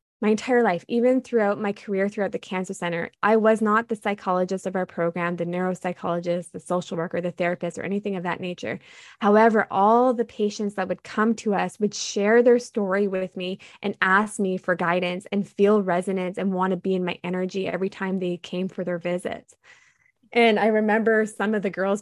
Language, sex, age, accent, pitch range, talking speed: English, female, 20-39, American, 185-220 Hz, 205 wpm